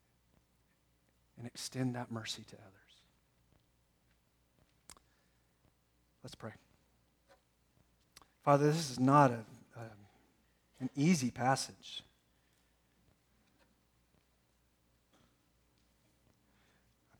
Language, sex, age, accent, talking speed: English, male, 40-59, American, 55 wpm